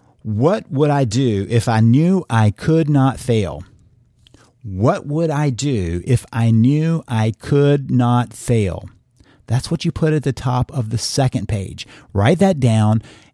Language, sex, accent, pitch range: English, male, American, 115-145 Hz